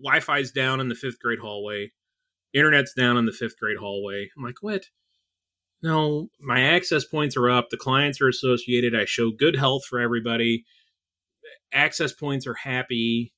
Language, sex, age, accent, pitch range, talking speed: English, male, 30-49, American, 115-150 Hz, 165 wpm